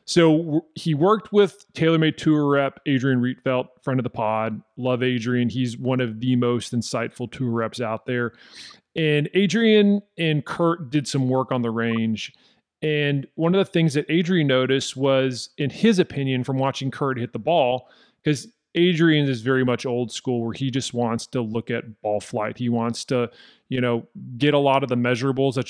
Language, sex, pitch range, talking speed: English, male, 120-145 Hz, 190 wpm